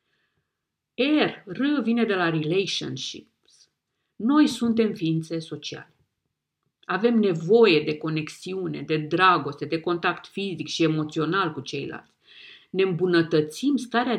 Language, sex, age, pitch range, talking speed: Romanian, female, 50-69, 165-230 Hz, 110 wpm